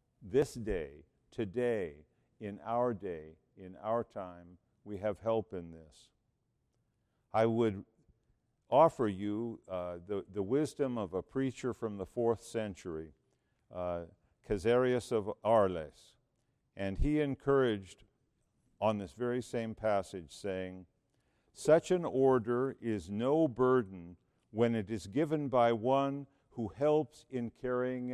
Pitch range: 100-130 Hz